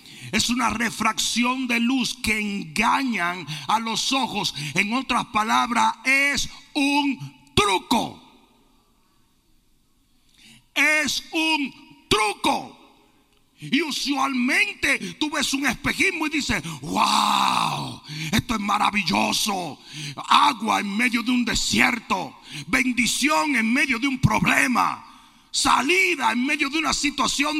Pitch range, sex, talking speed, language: 225-300 Hz, male, 105 wpm, Spanish